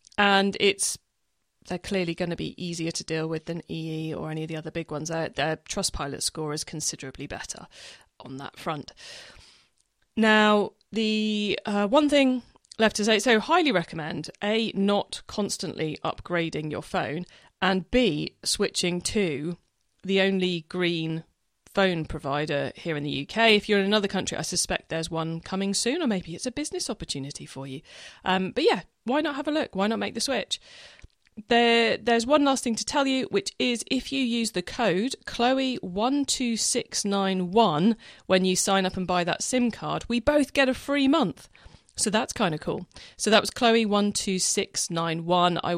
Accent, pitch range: British, 165-230 Hz